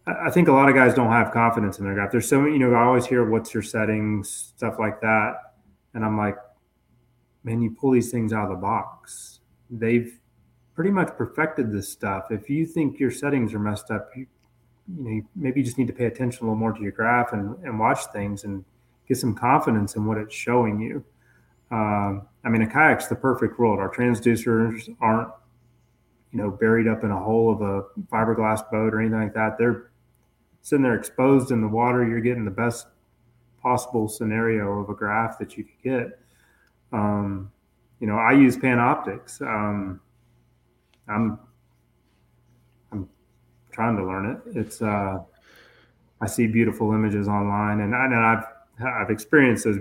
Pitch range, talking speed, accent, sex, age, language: 105-120 Hz, 185 wpm, American, male, 30-49, English